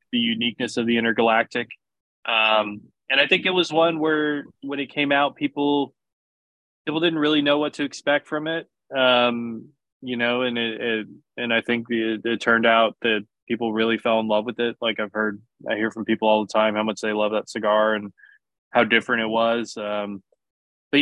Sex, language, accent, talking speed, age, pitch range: male, English, American, 205 wpm, 20-39, 105-125 Hz